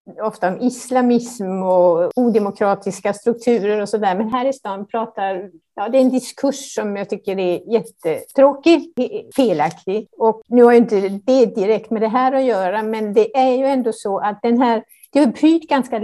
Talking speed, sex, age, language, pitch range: 185 wpm, female, 60-79, Swedish, 190-250 Hz